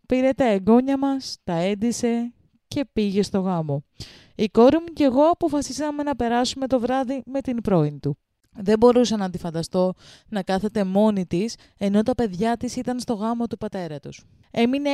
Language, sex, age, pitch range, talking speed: Greek, female, 20-39, 190-245 Hz, 175 wpm